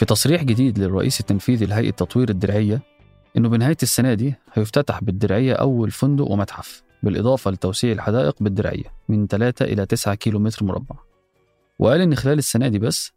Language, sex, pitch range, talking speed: Arabic, male, 105-130 Hz, 150 wpm